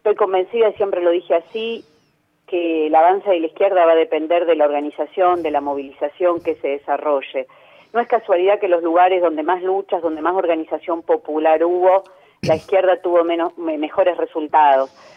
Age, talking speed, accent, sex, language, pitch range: 40-59, 175 wpm, Argentinian, female, Spanish, 160-215 Hz